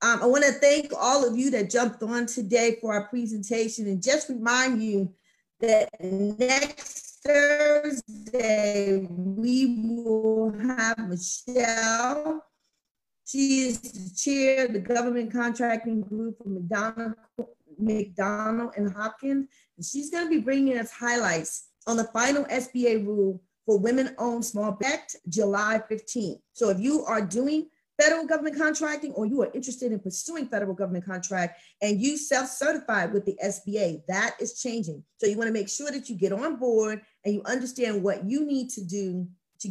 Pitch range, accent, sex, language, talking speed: 205-260 Hz, American, female, English, 155 wpm